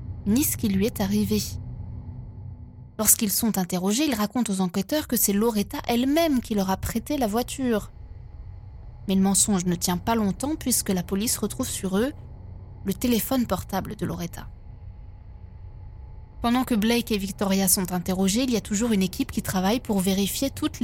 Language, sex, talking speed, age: French, female, 170 wpm, 20-39